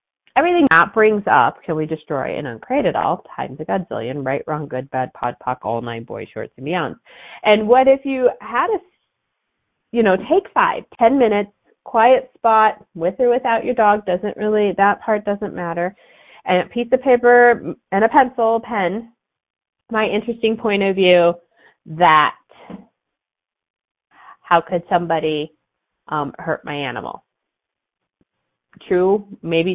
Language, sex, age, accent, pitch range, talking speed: English, female, 30-49, American, 145-215 Hz, 150 wpm